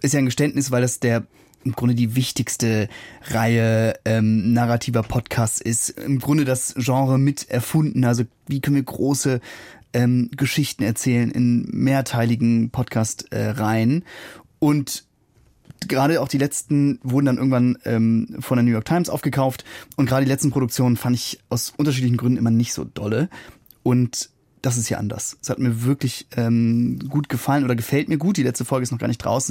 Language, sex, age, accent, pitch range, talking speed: German, male, 30-49, German, 120-140 Hz, 175 wpm